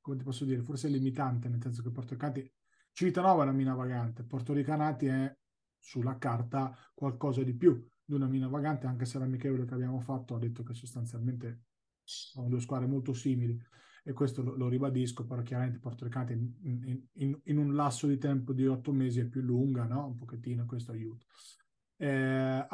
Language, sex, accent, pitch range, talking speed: Italian, male, native, 125-140 Hz, 195 wpm